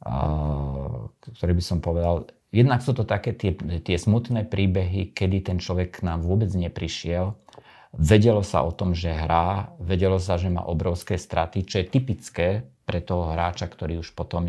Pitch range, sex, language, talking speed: 80-95 Hz, male, Slovak, 165 wpm